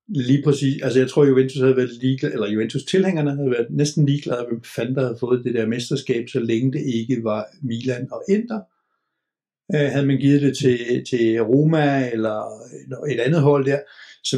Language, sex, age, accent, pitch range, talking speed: Danish, male, 60-79, native, 115-140 Hz, 170 wpm